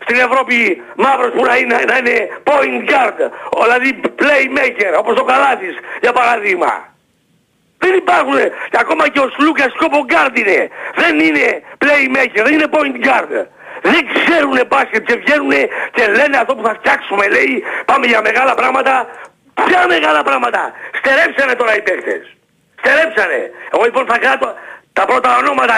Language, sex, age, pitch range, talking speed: Greek, male, 60-79, 245-320 Hz, 140 wpm